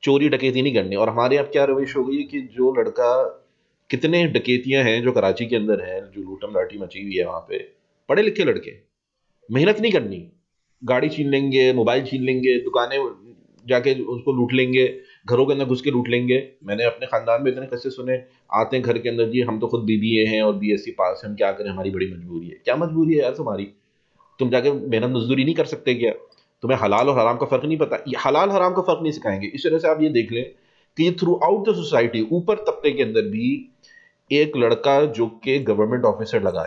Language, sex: English, male